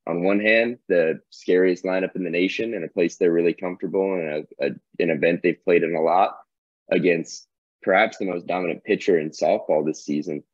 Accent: American